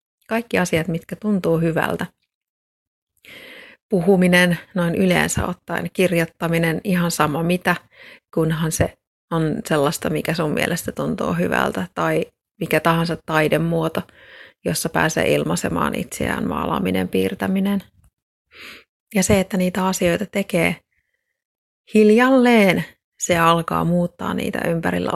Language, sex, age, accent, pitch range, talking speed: Finnish, female, 30-49, native, 165-200 Hz, 105 wpm